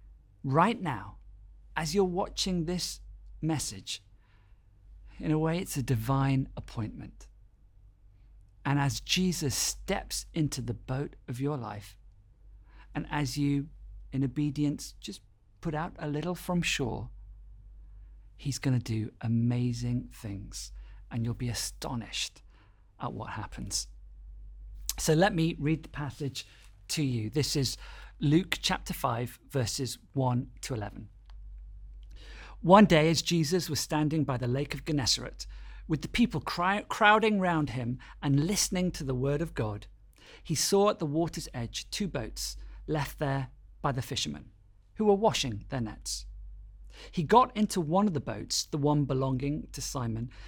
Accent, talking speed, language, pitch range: British, 145 wpm, English, 105-155 Hz